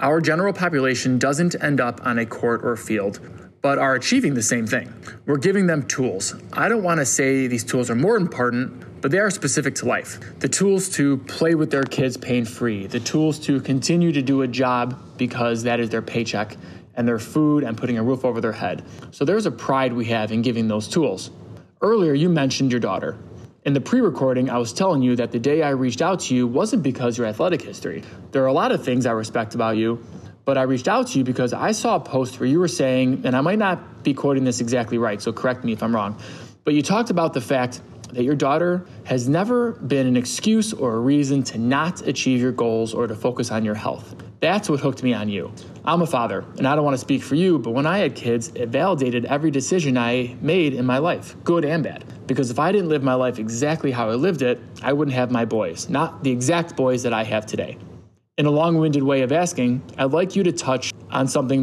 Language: English